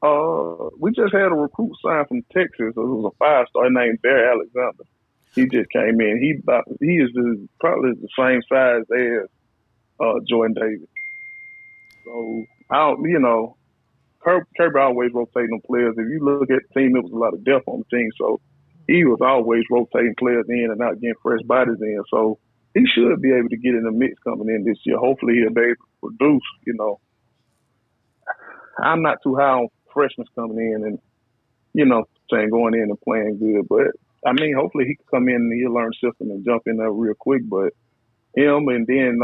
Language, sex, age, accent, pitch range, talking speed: English, male, 20-39, American, 115-130 Hz, 200 wpm